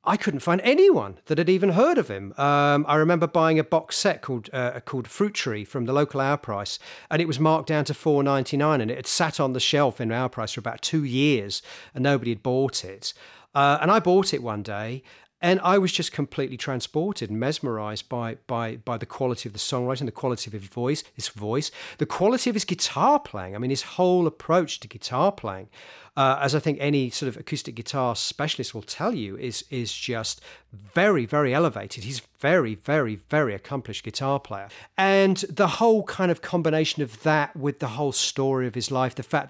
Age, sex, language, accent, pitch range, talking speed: 40-59, male, English, British, 120-155 Hz, 215 wpm